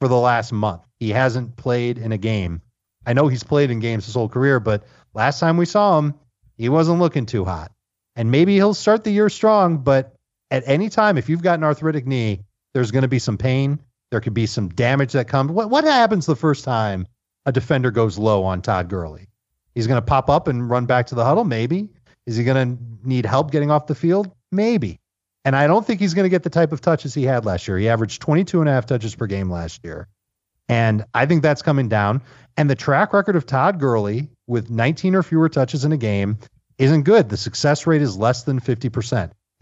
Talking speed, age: 230 wpm, 40-59